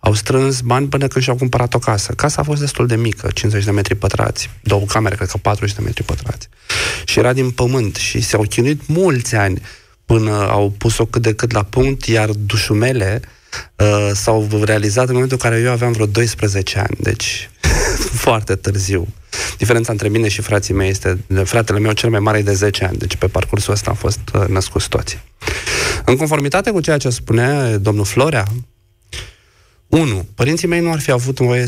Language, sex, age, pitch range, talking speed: Romanian, male, 30-49, 100-125 Hz, 195 wpm